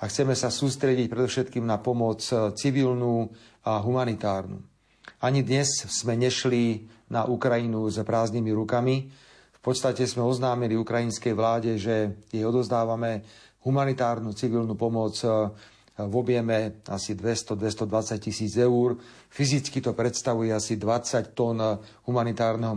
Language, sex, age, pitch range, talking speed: Slovak, male, 40-59, 110-125 Hz, 115 wpm